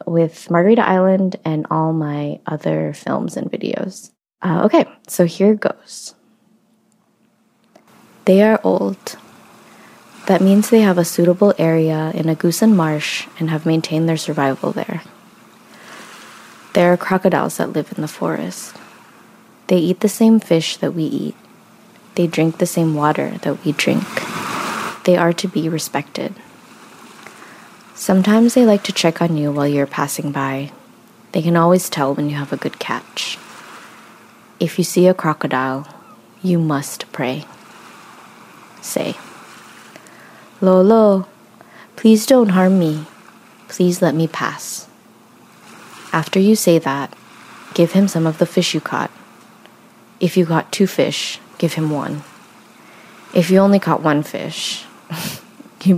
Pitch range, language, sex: 155-200 Hz, English, female